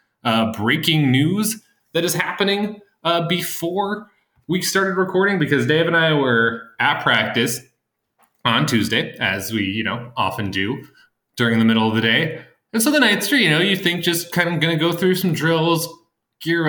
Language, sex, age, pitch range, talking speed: English, male, 20-39, 120-160 Hz, 180 wpm